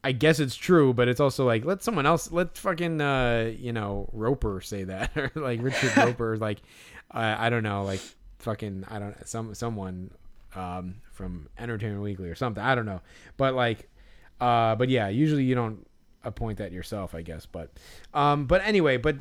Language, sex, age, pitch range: English, male, 20-39, 110-145 Hz